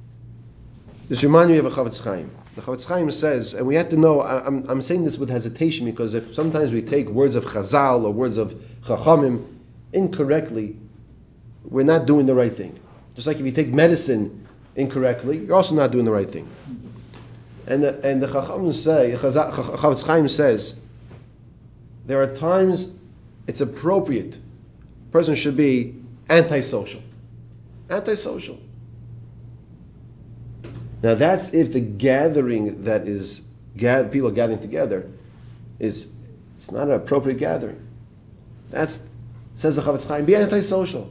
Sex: male